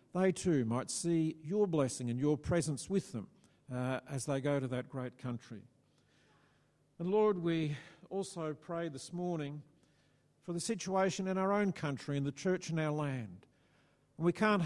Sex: male